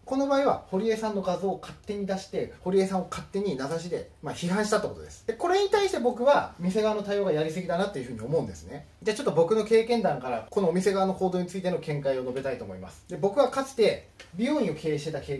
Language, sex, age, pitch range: Japanese, male, 30-49, 165-270 Hz